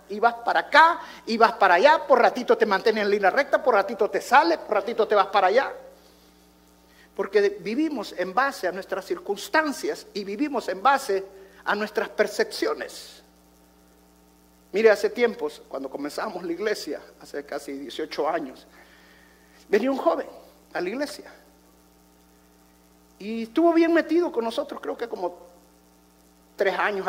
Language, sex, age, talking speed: Spanish, male, 50-69, 150 wpm